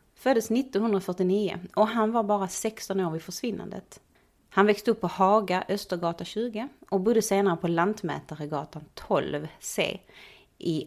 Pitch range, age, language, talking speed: 165-200 Hz, 30-49, Swedish, 135 wpm